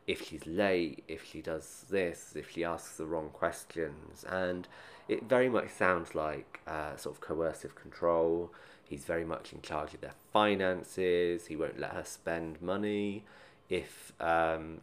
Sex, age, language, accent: male, 20-39, English, British